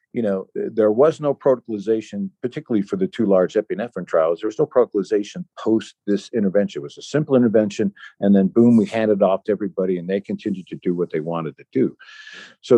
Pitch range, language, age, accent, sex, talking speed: 90-110 Hz, English, 50-69, American, male, 205 wpm